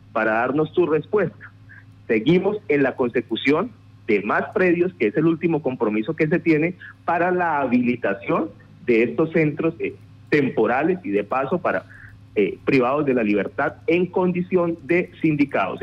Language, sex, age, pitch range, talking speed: Spanish, male, 40-59, 115-165 Hz, 150 wpm